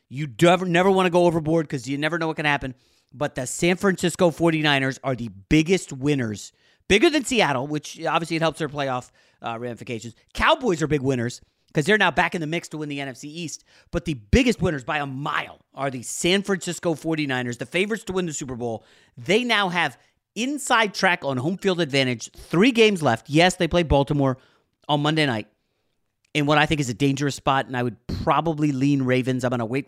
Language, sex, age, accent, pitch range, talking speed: English, male, 30-49, American, 130-175 Hz, 215 wpm